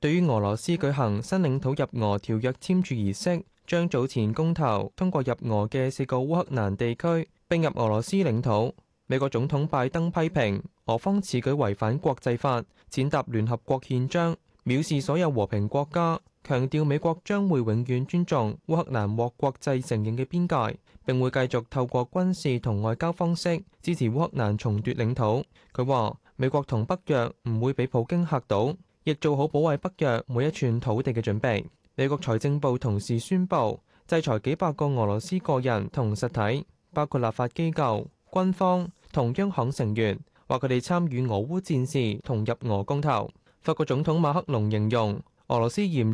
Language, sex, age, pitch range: Chinese, male, 20-39, 115-160 Hz